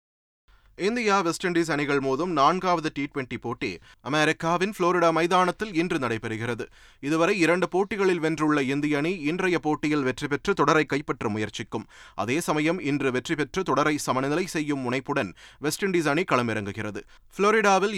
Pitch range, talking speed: 125-170 Hz, 135 wpm